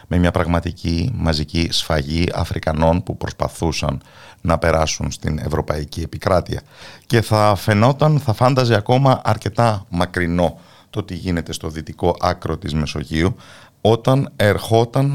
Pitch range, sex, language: 80-110 Hz, male, Greek